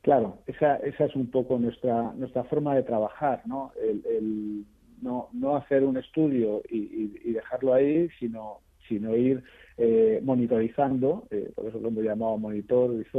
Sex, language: male, Spanish